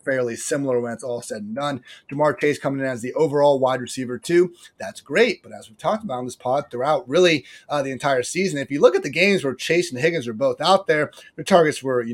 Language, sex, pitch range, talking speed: English, male, 125-180 Hz, 255 wpm